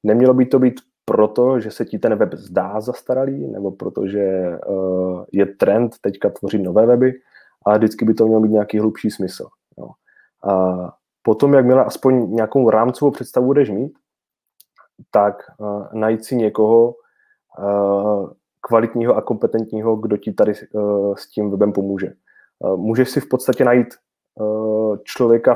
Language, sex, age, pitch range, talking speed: Czech, male, 20-39, 100-120 Hz, 155 wpm